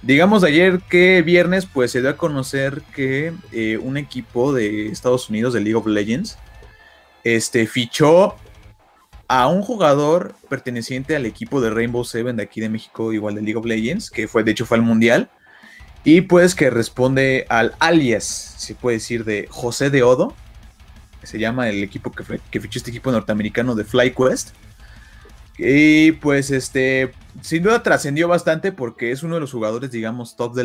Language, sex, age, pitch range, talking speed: Spanish, male, 30-49, 110-140 Hz, 175 wpm